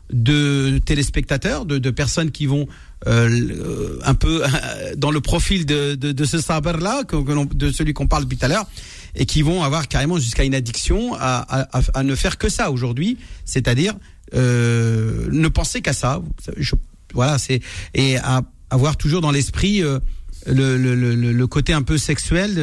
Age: 40-59